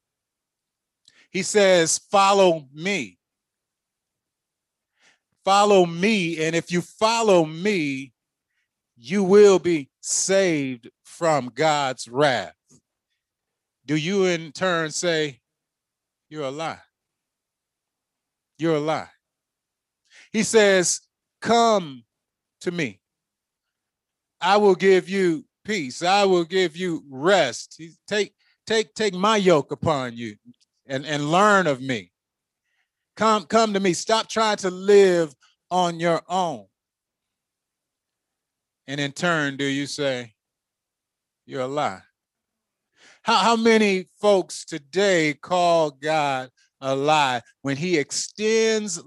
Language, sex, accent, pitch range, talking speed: English, male, American, 140-195 Hz, 110 wpm